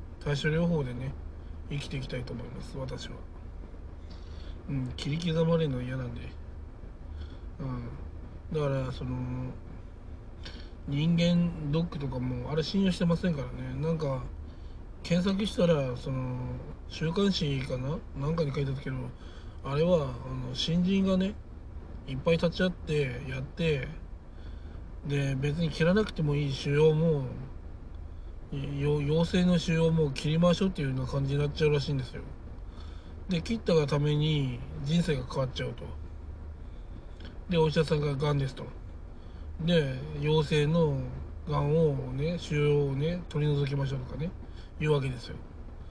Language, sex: Japanese, male